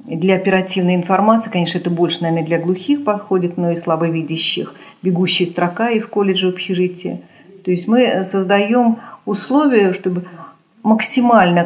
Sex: female